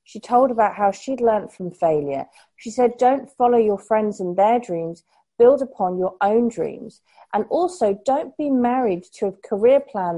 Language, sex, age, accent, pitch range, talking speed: English, female, 40-59, British, 185-230 Hz, 185 wpm